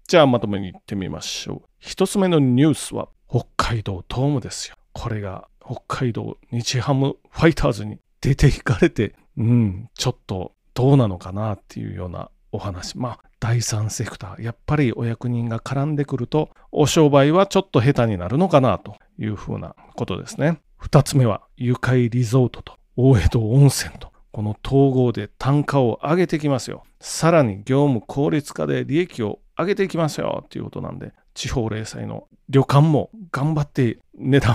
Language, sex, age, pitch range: Japanese, male, 40-59, 115-155 Hz